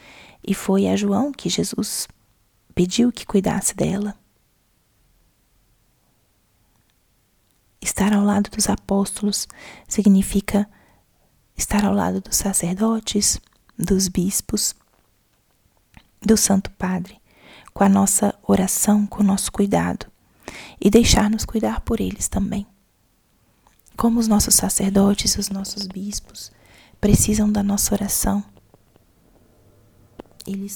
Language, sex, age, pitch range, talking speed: Portuguese, female, 20-39, 175-205 Hz, 100 wpm